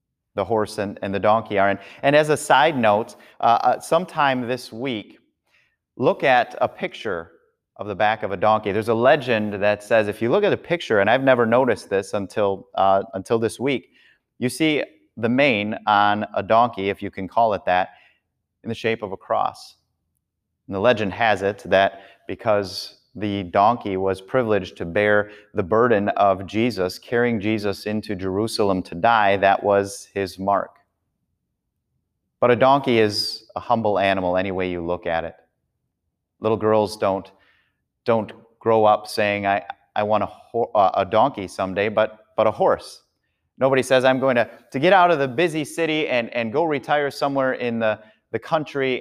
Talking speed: 180 wpm